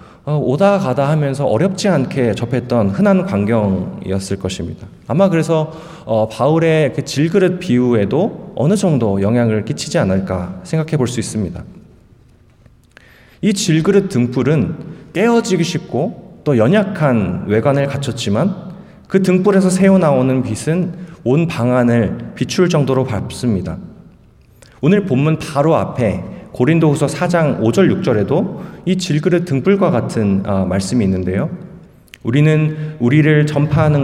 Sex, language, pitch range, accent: male, Korean, 110-165 Hz, native